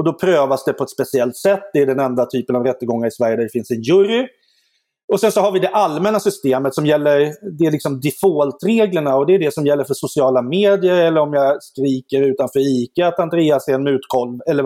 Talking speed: 235 wpm